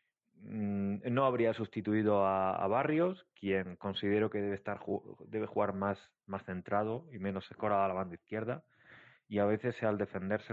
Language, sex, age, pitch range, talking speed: Spanish, male, 30-49, 90-110 Hz, 155 wpm